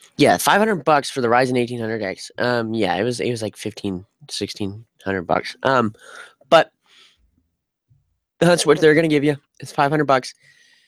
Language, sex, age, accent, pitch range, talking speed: English, male, 20-39, American, 110-155 Hz, 175 wpm